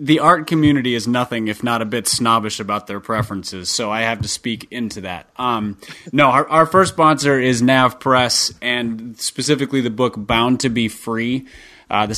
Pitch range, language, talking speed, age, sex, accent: 115-135 Hz, English, 190 wpm, 30-49, male, American